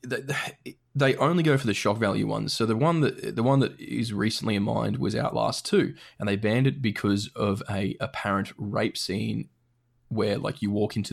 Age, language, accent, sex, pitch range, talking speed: 20-39, English, Australian, male, 105-135 Hz, 200 wpm